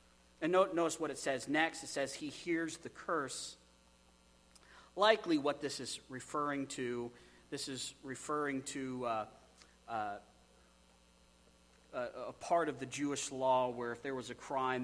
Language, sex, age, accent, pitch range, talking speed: English, male, 40-59, American, 115-165 Hz, 150 wpm